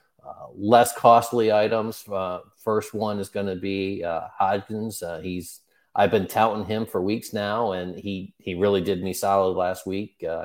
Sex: male